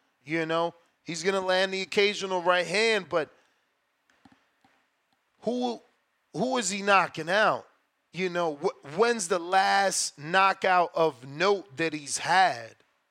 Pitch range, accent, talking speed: 165-215 Hz, American, 135 wpm